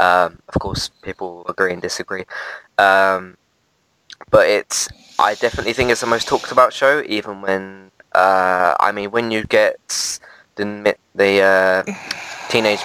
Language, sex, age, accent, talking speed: English, male, 20-39, British, 145 wpm